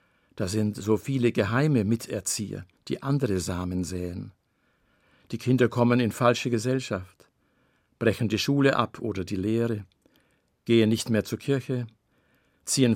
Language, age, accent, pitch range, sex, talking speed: German, 50-69, German, 105-130 Hz, male, 135 wpm